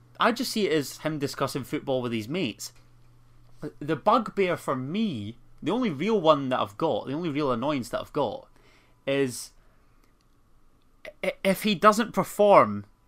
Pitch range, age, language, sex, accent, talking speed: 120-155 Hz, 30-49, English, male, British, 155 wpm